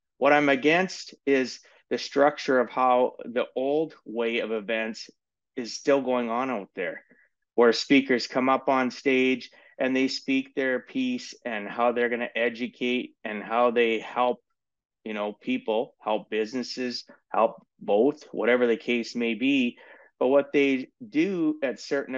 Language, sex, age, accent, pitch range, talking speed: English, male, 30-49, American, 120-140 Hz, 155 wpm